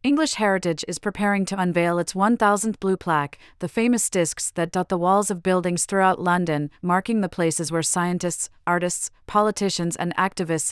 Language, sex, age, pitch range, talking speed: English, female, 30-49, 170-200 Hz, 170 wpm